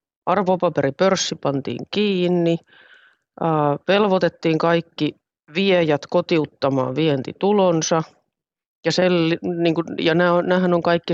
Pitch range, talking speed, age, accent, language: 145-175 Hz, 90 wpm, 40-59, native, Finnish